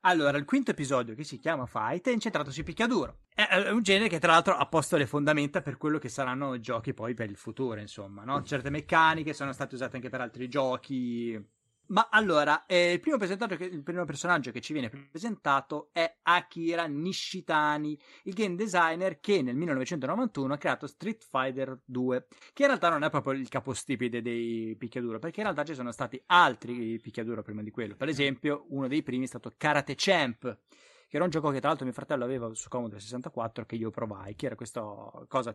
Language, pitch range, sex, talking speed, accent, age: English, 120-165 Hz, male, 205 wpm, Italian, 30-49